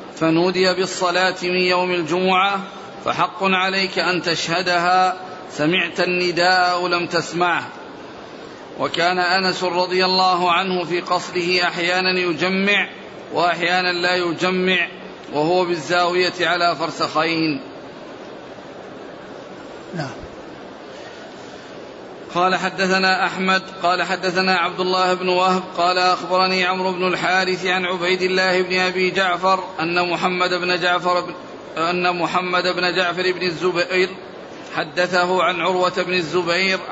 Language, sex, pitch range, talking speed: Arabic, male, 175-185 Hz, 105 wpm